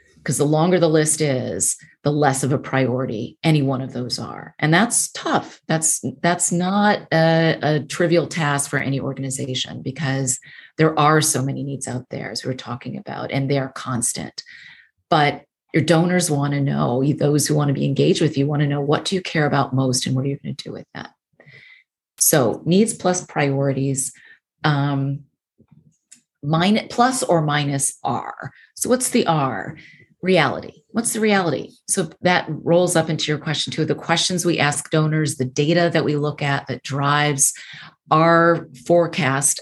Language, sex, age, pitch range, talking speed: English, female, 30-49, 135-165 Hz, 180 wpm